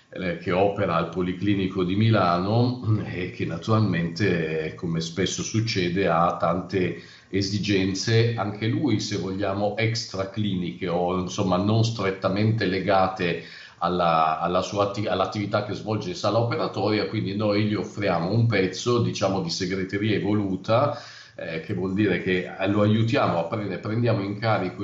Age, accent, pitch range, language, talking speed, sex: 50-69, native, 90-110 Hz, Italian, 125 wpm, male